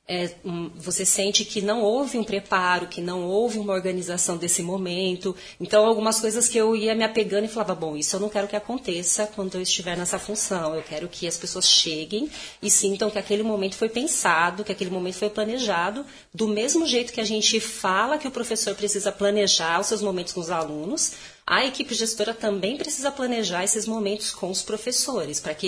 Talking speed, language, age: 200 wpm, Portuguese, 40-59